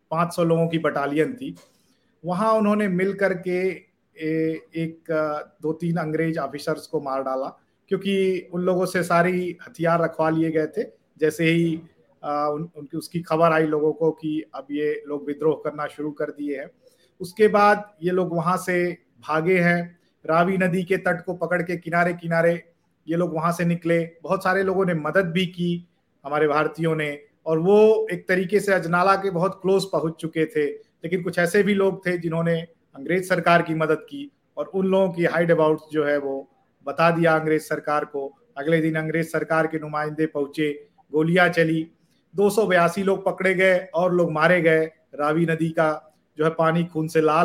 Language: English